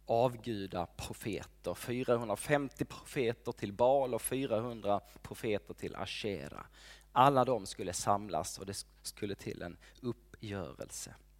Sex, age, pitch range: male, 20-39, 110-175 Hz